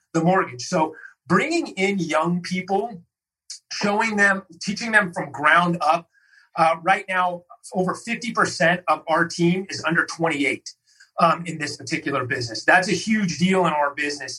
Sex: male